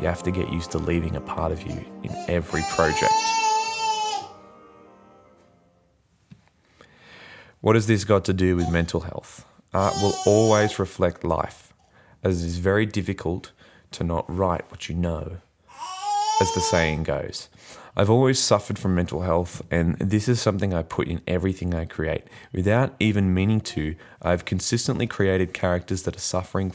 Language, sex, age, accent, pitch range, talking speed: English, male, 20-39, Australian, 85-110 Hz, 155 wpm